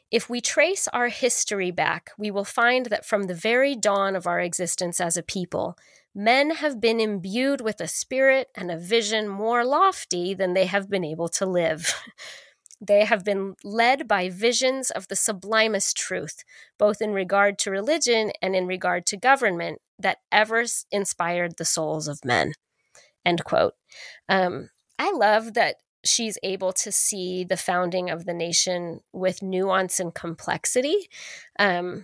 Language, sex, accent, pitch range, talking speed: English, female, American, 180-230 Hz, 160 wpm